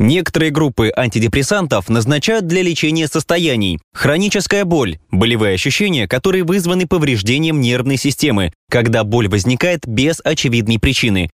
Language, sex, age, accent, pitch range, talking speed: Russian, male, 20-39, native, 105-165 Hz, 120 wpm